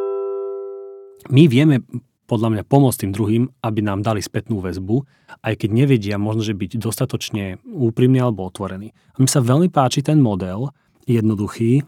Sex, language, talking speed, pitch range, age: male, Slovak, 150 wpm, 110-140 Hz, 30-49